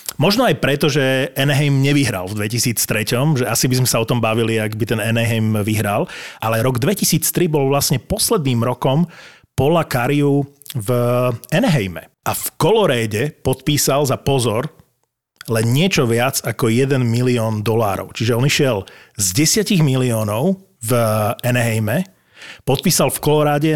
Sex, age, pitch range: male, 30-49, 115-145 Hz